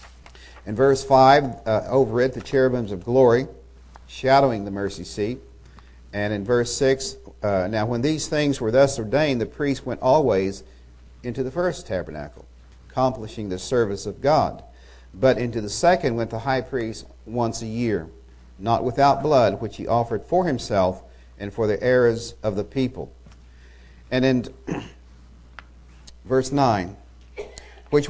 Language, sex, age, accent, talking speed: English, male, 50-69, American, 150 wpm